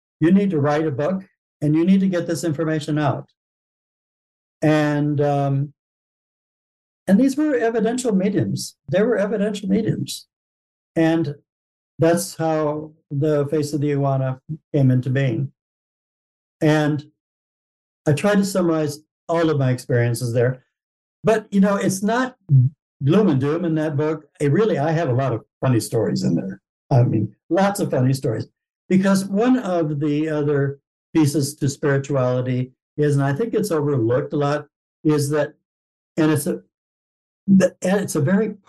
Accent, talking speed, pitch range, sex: American, 150 wpm, 130-160 Hz, male